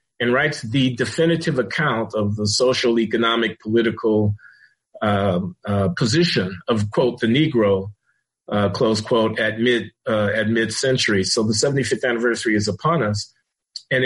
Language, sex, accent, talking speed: English, male, American, 140 wpm